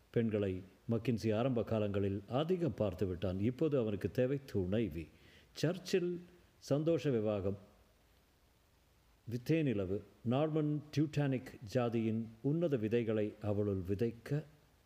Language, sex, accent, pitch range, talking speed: Tamil, male, native, 100-130 Hz, 95 wpm